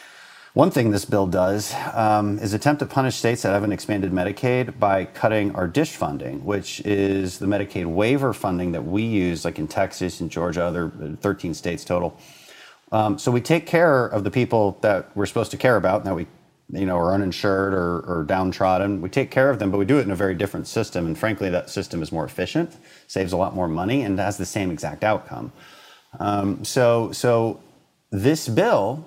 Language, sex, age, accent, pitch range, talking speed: English, male, 40-59, American, 85-110 Hz, 205 wpm